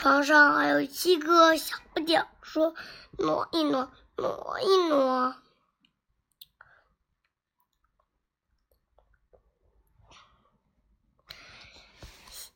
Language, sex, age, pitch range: Chinese, male, 20-39, 275-365 Hz